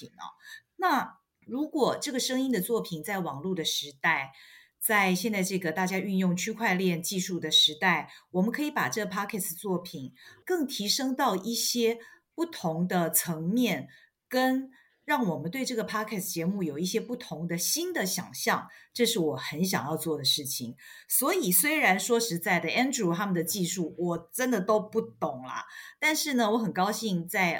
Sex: female